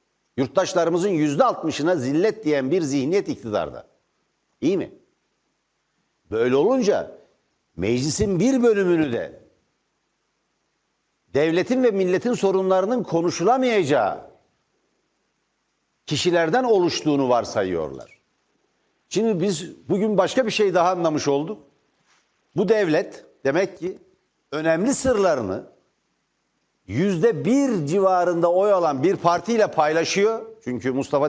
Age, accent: 60-79, native